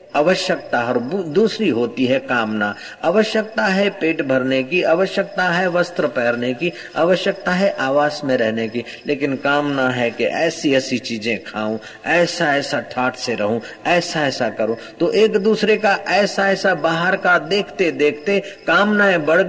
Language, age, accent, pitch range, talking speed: Hindi, 50-69, native, 135-185 Hz, 140 wpm